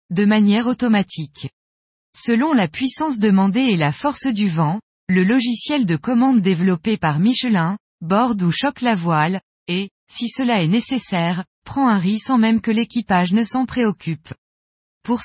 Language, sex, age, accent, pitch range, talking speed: French, female, 20-39, French, 180-245 Hz, 155 wpm